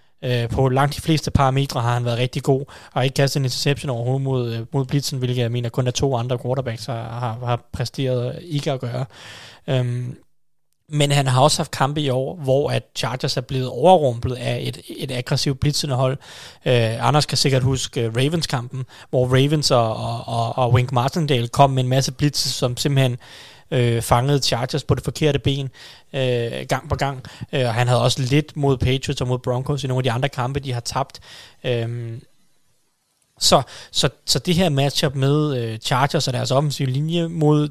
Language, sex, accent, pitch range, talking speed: Danish, male, native, 125-145 Hz, 195 wpm